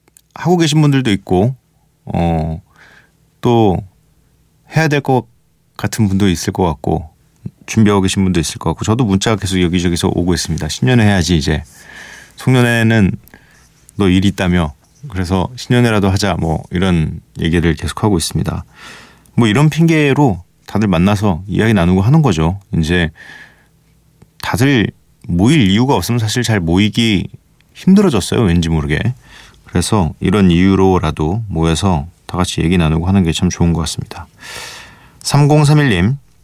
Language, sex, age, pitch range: Korean, male, 30-49, 85-125 Hz